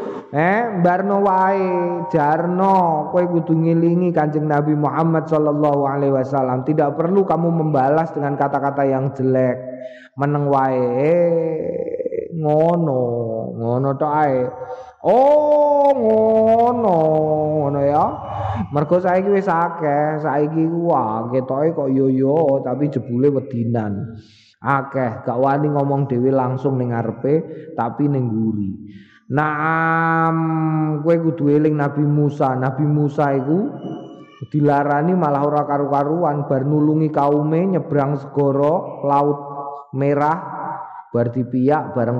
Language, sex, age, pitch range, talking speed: Indonesian, male, 20-39, 140-170 Hz, 105 wpm